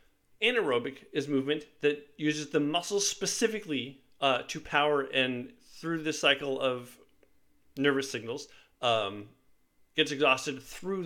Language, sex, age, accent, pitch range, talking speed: English, male, 40-59, American, 150-220 Hz, 120 wpm